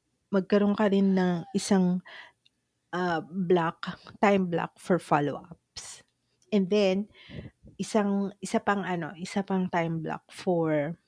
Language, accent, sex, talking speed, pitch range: English, Filipino, female, 110 wpm, 155-190 Hz